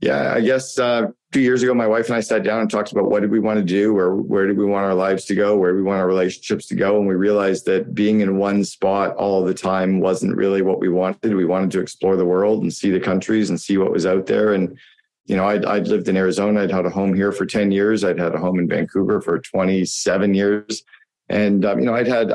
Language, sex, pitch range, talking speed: English, male, 95-105 Hz, 275 wpm